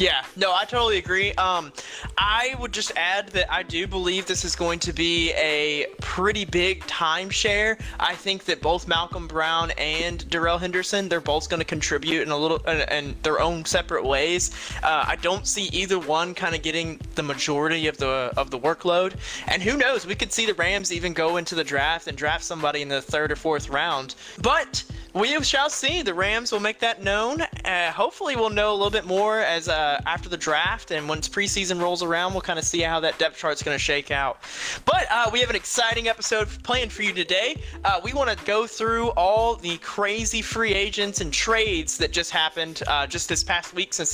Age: 20-39